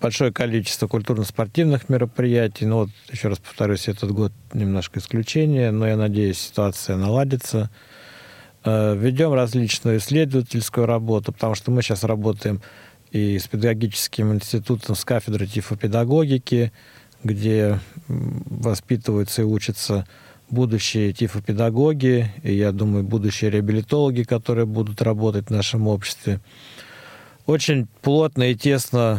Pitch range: 105-125 Hz